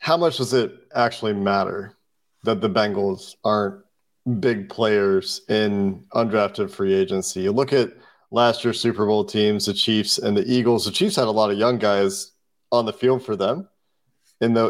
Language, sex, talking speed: English, male, 180 wpm